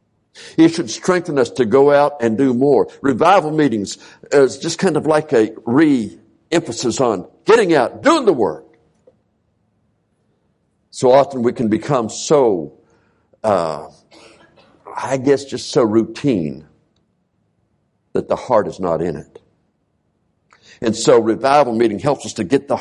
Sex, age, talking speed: male, 60-79, 140 wpm